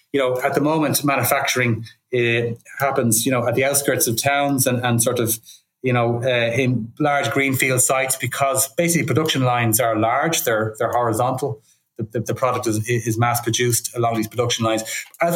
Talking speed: 190 wpm